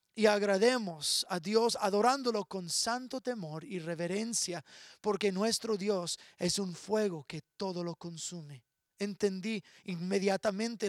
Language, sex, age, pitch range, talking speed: English, male, 30-49, 175-230 Hz, 120 wpm